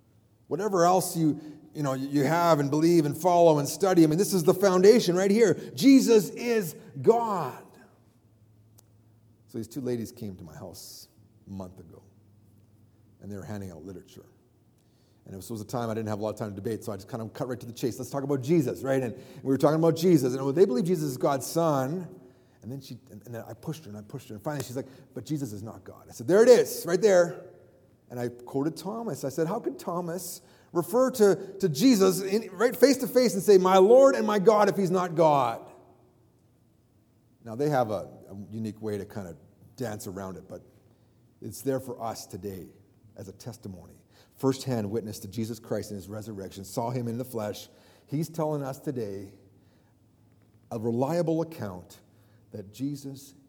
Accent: American